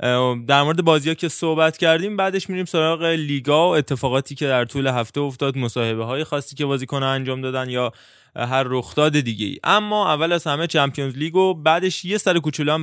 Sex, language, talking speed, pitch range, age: male, Persian, 185 wpm, 130-160 Hz, 20-39